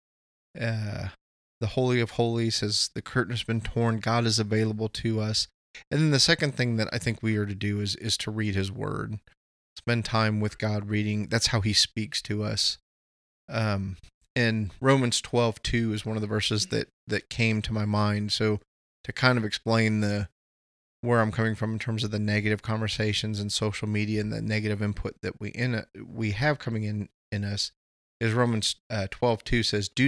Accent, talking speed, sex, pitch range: American, 200 wpm, male, 105-115 Hz